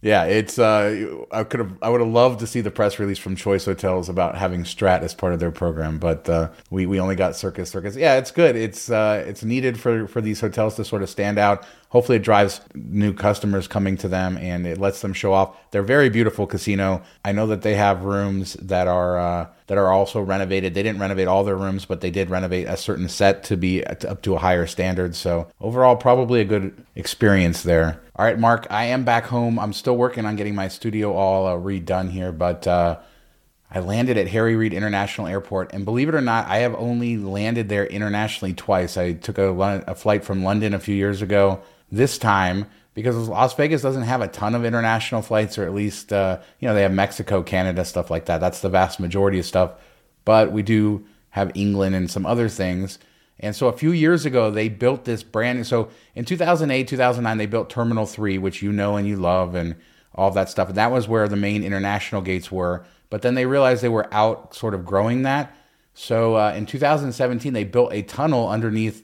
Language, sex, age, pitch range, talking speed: English, male, 30-49, 95-115 Hz, 220 wpm